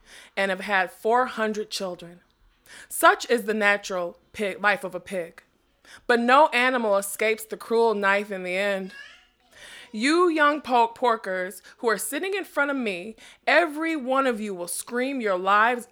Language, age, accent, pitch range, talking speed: English, 20-39, American, 195-245 Hz, 155 wpm